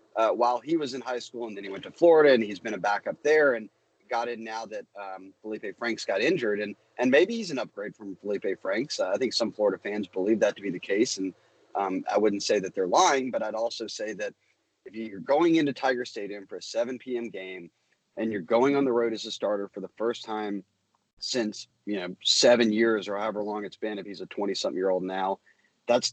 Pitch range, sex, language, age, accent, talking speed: 110-150 Hz, male, English, 30-49, American, 245 wpm